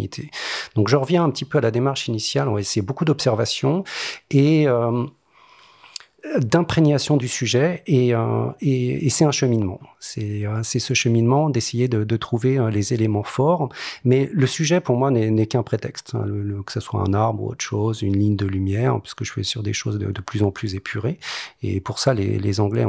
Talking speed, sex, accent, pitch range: 215 wpm, male, French, 105-135 Hz